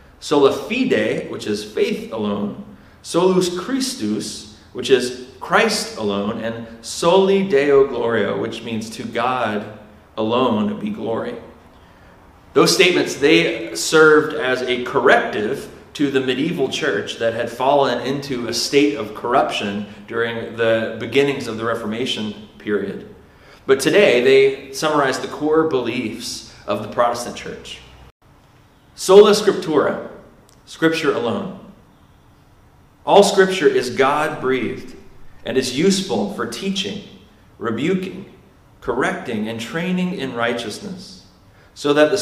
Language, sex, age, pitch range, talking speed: English, male, 30-49, 105-150 Hz, 115 wpm